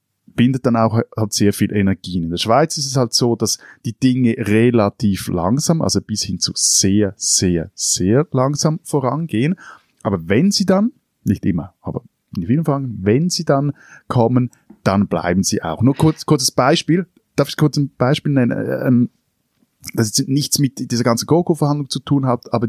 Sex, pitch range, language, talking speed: male, 105-135 Hz, German, 185 wpm